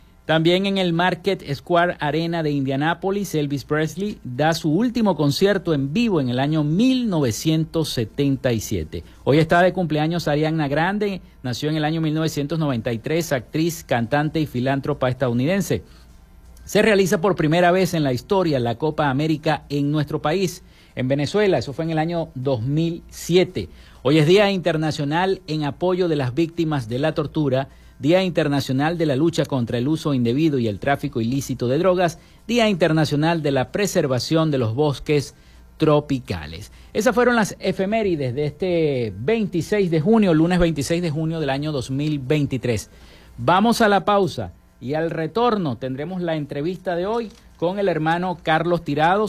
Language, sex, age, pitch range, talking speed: Spanish, male, 50-69, 135-175 Hz, 155 wpm